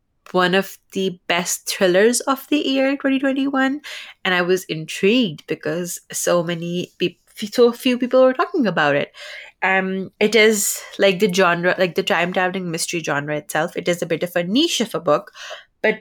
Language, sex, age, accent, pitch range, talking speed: English, female, 20-39, Indian, 170-210 Hz, 175 wpm